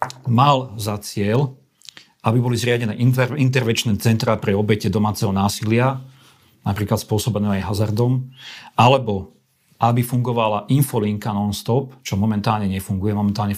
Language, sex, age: Slovak, male, 40-59